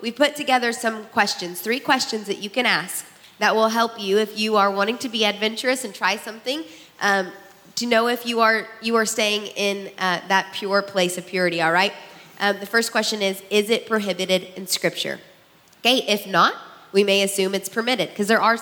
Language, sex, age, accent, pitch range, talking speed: English, female, 20-39, American, 180-225 Hz, 205 wpm